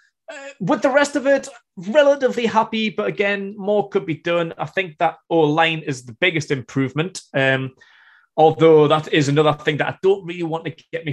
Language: English